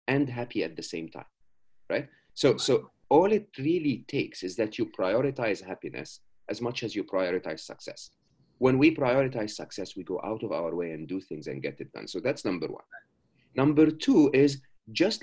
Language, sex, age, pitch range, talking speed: English, male, 40-59, 110-160 Hz, 195 wpm